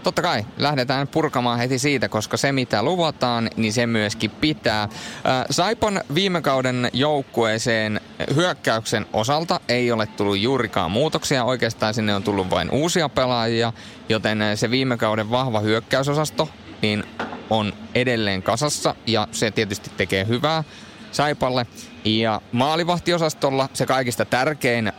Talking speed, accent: 125 wpm, native